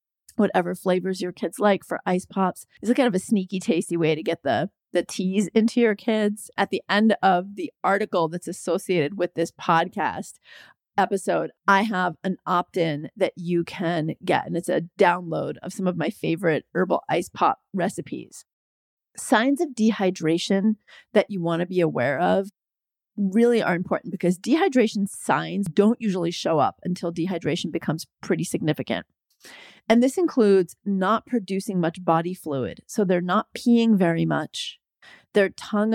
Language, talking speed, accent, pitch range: English, 165 wpm, American, 175-210 Hz